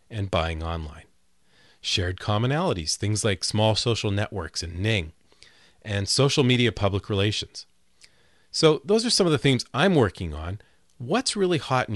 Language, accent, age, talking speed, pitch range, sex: English, American, 40-59, 155 wpm, 90-120 Hz, male